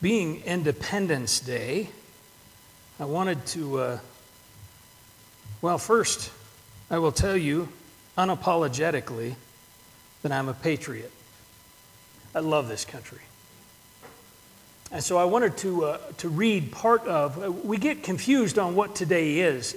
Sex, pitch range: male, 135-185 Hz